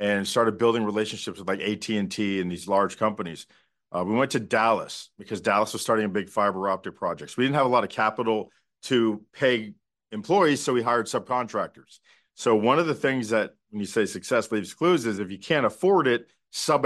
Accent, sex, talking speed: American, male, 210 wpm